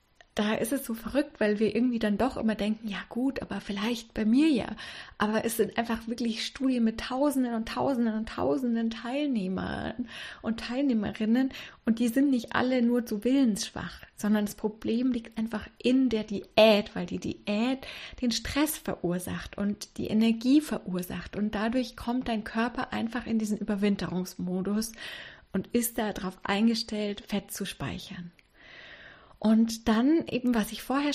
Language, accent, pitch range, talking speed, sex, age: German, German, 210-245 Hz, 160 wpm, female, 20-39